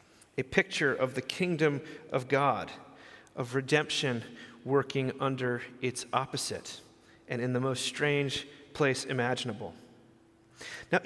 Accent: American